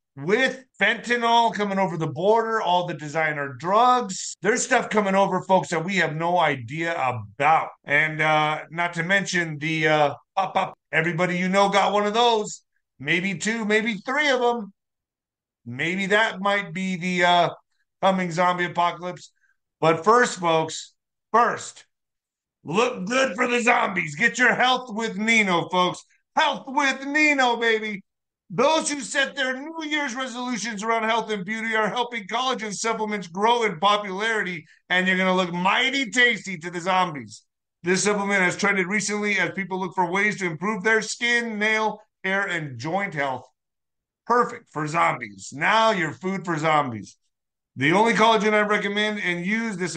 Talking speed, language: 160 wpm, English